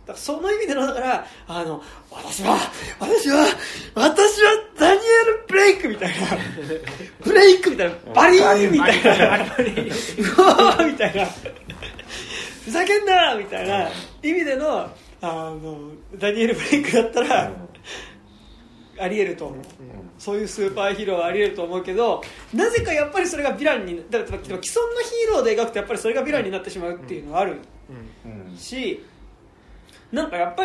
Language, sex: Japanese, male